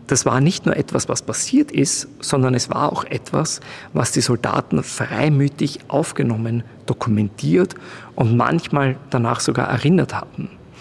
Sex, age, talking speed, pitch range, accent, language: male, 40-59, 140 wpm, 120-140 Hz, German, German